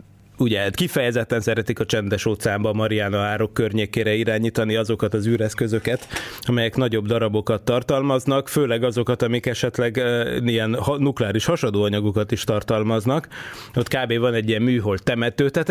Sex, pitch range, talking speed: male, 110-130 Hz, 135 wpm